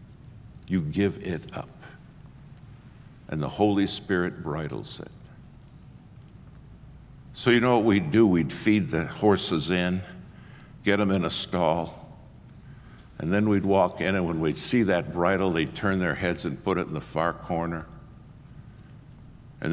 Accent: American